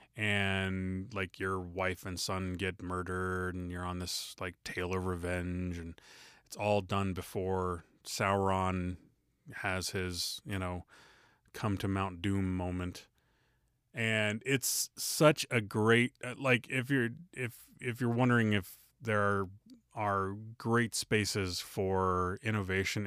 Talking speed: 130 wpm